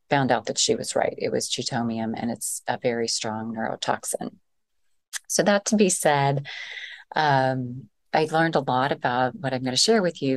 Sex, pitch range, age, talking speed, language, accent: female, 125-145 Hz, 30-49, 190 wpm, English, American